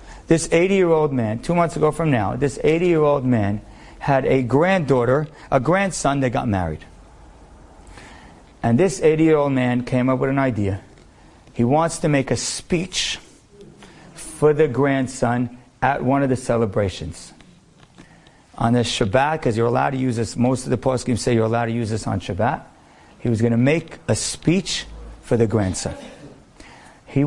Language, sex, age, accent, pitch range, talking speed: English, male, 50-69, American, 120-160 Hz, 165 wpm